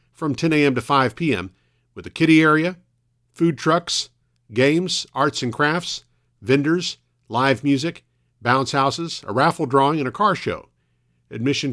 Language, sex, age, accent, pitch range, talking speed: English, male, 50-69, American, 120-150 Hz, 150 wpm